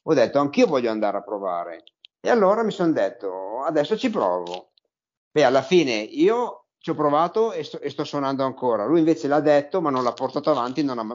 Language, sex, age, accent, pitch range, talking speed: Italian, male, 50-69, native, 125-155 Hz, 210 wpm